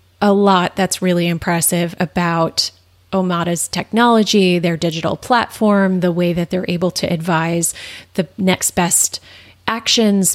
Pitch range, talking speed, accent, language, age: 175-200 Hz, 130 wpm, American, English, 30-49